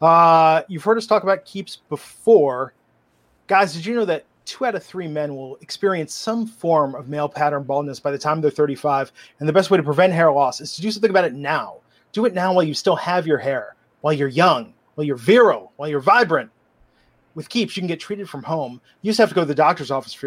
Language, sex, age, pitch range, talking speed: English, male, 30-49, 150-190 Hz, 245 wpm